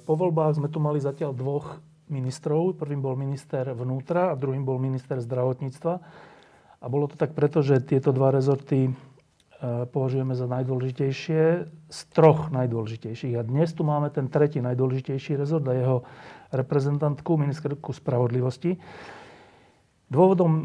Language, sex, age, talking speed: Slovak, male, 40-59, 135 wpm